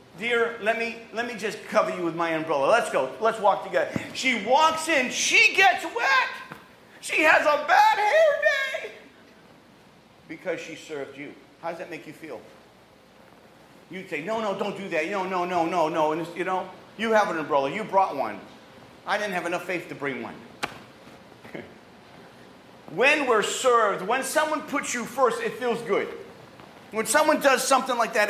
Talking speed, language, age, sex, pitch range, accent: 180 wpm, English, 40-59, male, 180-270 Hz, American